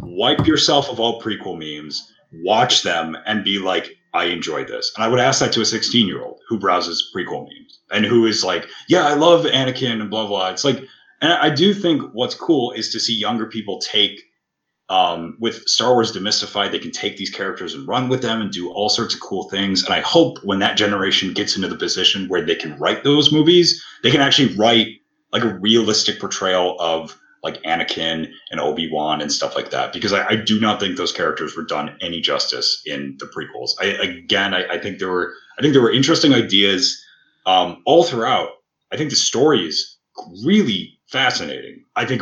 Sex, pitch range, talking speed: male, 90-130 Hz, 205 wpm